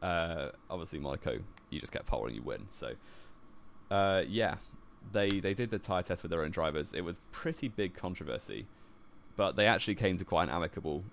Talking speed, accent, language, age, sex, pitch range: 195 wpm, British, English, 20-39, male, 85-105 Hz